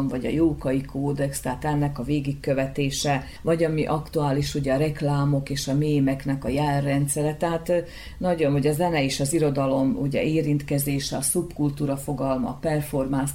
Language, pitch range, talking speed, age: Hungarian, 140-155 Hz, 155 wpm, 40-59